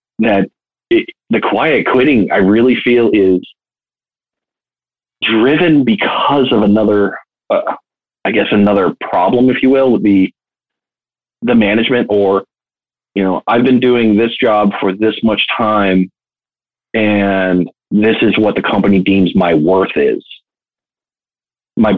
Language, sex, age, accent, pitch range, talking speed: English, male, 30-49, American, 100-120 Hz, 130 wpm